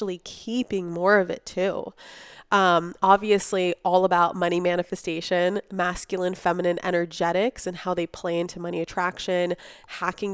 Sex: female